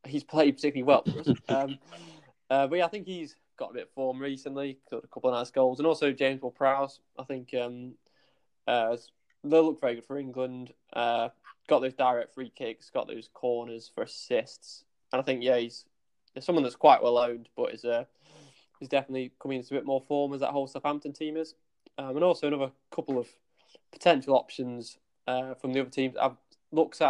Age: 20-39